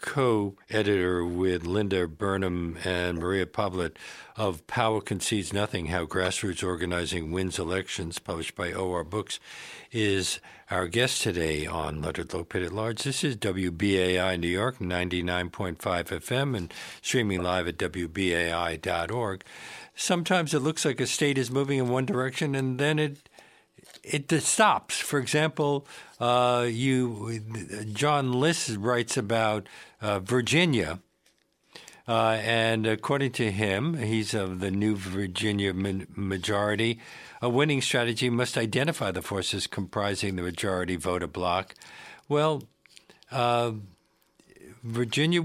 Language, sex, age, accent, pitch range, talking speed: English, male, 60-79, American, 95-135 Hz, 125 wpm